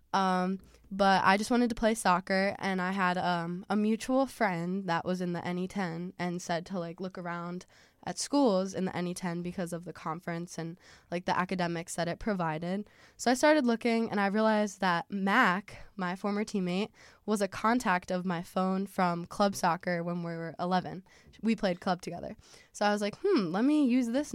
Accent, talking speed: American, 195 wpm